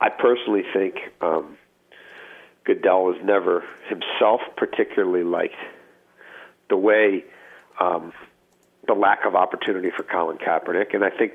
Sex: male